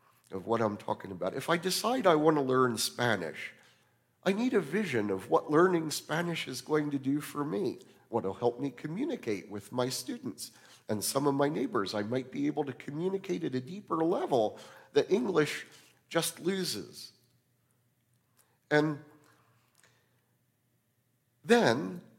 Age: 50-69